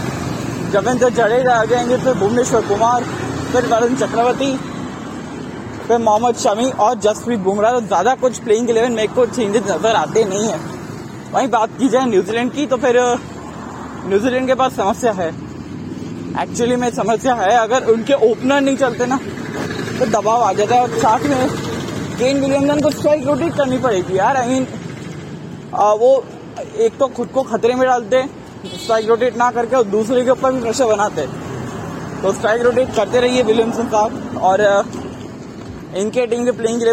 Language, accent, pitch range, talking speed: Hindi, native, 215-255 Hz, 155 wpm